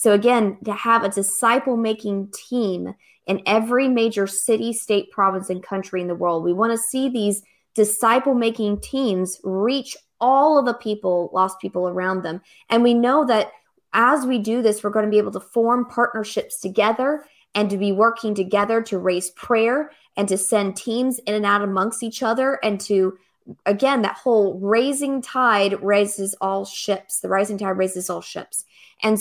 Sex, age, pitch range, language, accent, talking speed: female, 20-39, 195-240 Hz, English, American, 180 wpm